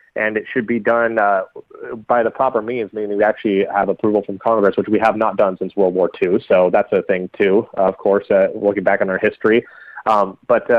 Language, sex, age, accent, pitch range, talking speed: English, male, 30-49, American, 105-125 Hz, 230 wpm